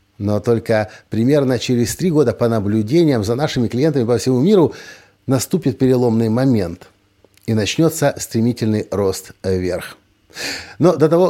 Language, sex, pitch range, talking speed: Russian, male, 105-155 Hz, 135 wpm